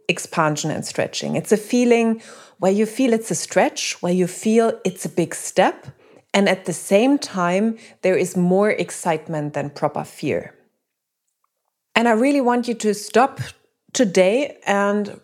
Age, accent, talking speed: 30-49, German, 160 wpm